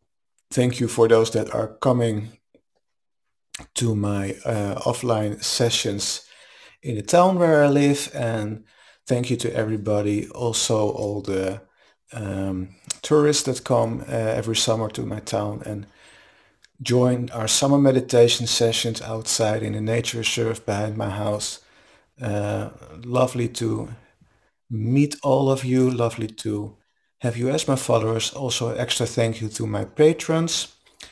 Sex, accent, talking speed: male, Dutch, 140 wpm